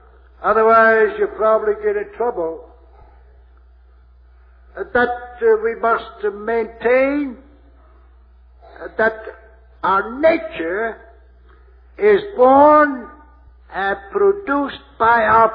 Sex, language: male, English